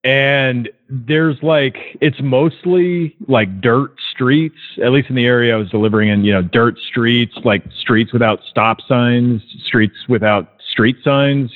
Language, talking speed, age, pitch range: English, 155 wpm, 40-59, 115-140 Hz